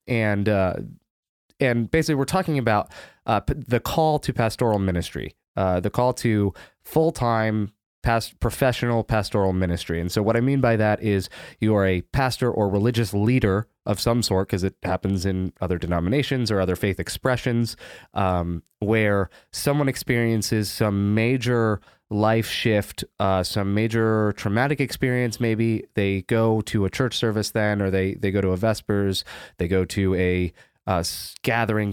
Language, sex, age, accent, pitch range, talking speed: English, male, 20-39, American, 100-120 Hz, 160 wpm